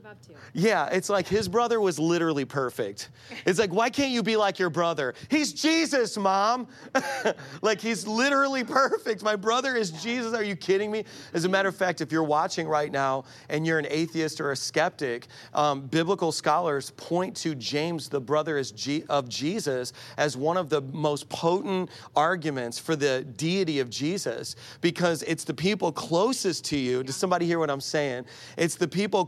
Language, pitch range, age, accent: English, 135-185 Hz, 40-59, American